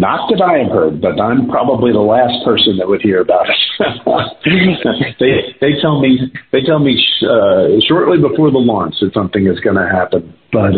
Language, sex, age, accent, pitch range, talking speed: English, male, 50-69, American, 100-130 Hz, 200 wpm